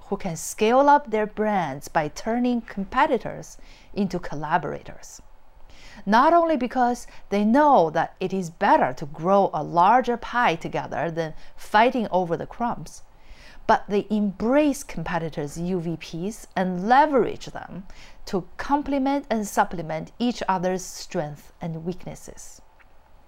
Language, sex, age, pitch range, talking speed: English, female, 40-59, 170-245 Hz, 125 wpm